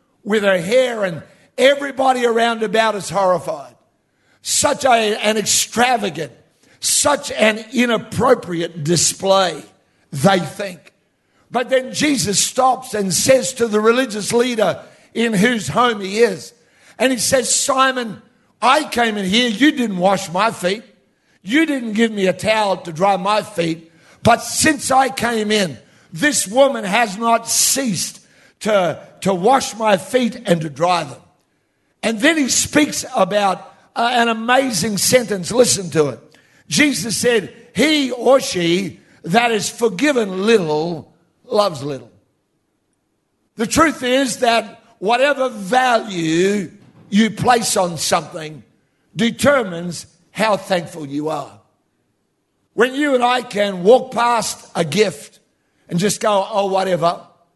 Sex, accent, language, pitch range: male, American, English, 180-245 Hz